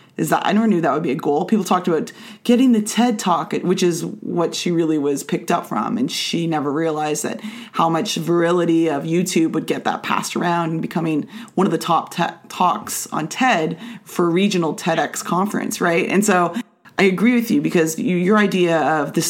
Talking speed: 210 wpm